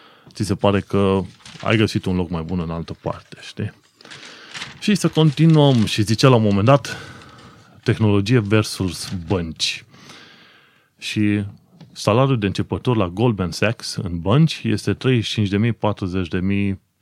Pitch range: 95-125 Hz